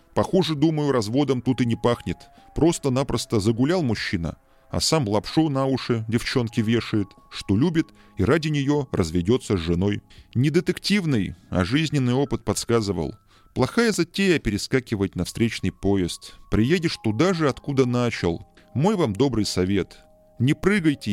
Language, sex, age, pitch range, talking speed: Russian, male, 20-39, 100-150 Hz, 140 wpm